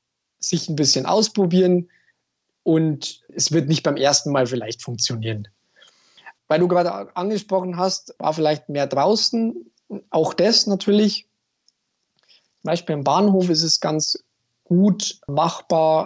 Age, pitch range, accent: 20-39, 135-175 Hz, German